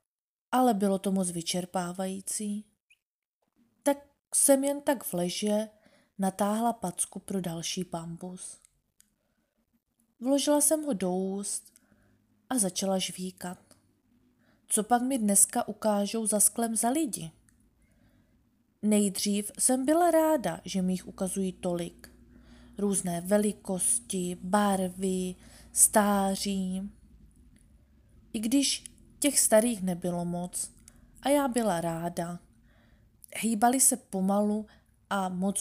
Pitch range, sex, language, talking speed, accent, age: 180-225 Hz, female, Czech, 105 wpm, native, 20-39